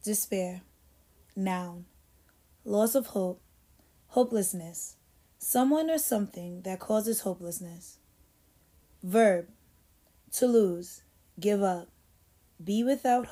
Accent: American